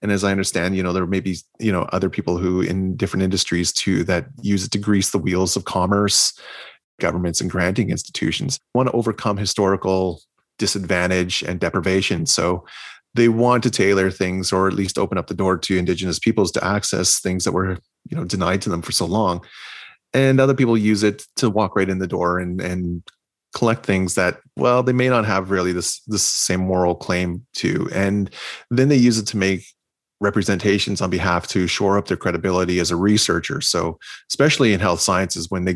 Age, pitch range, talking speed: 30-49, 90-105 Hz, 200 wpm